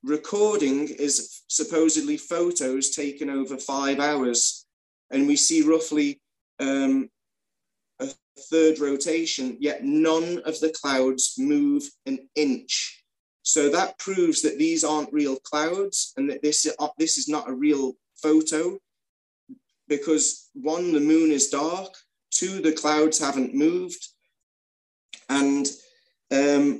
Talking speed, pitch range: 120 wpm, 135-165 Hz